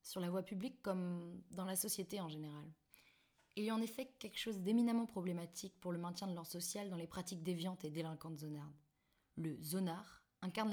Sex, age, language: female, 20-39, French